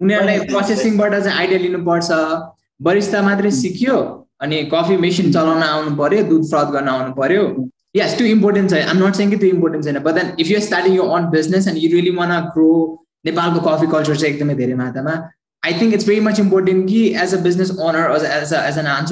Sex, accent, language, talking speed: male, Indian, English, 120 wpm